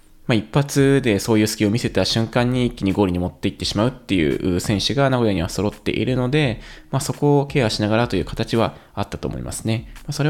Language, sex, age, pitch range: Japanese, male, 20-39, 95-125 Hz